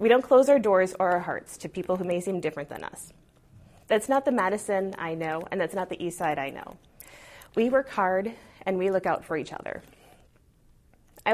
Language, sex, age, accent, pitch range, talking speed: English, female, 20-39, American, 170-210 Hz, 215 wpm